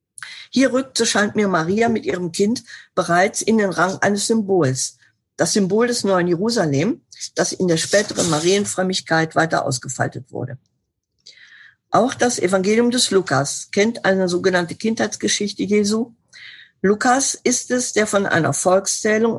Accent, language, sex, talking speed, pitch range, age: German, German, female, 140 wpm, 165-210 Hz, 50-69